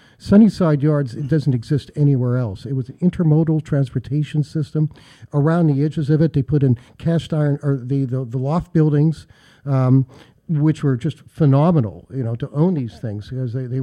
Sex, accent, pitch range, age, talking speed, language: male, American, 125-155 Hz, 50-69, 185 wpm, English